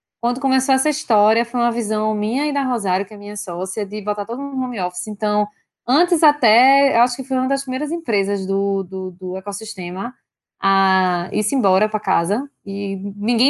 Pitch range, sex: 200-260 Hz, female